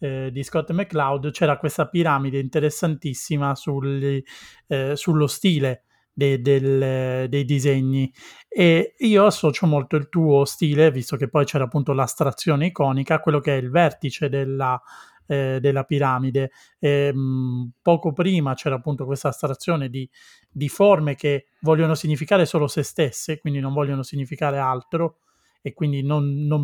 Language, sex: Italian, male